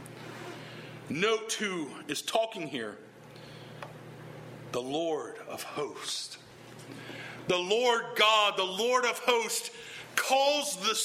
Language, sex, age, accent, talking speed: English, male, 40-59, American, 100 wpm